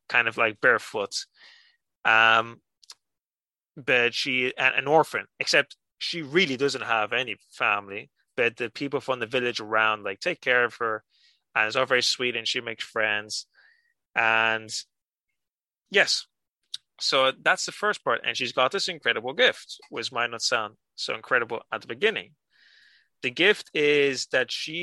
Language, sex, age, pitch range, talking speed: English, male, 20-39, 120-155 Hz, 155 wpm